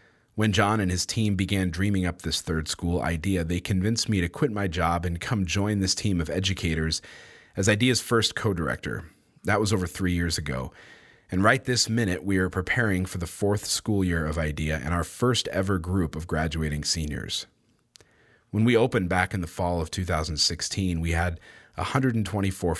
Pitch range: 85-105 Hz